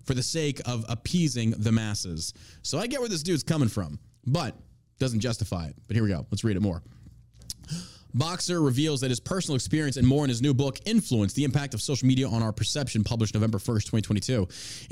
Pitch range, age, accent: 115-155 Hz, 20-39, American